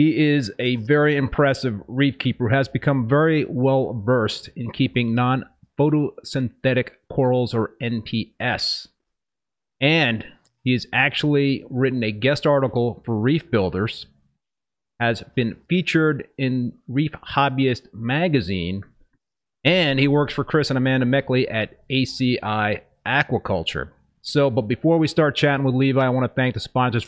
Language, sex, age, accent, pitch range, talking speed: English, male, 30-49, American, 110-135 Hz, 135 wpm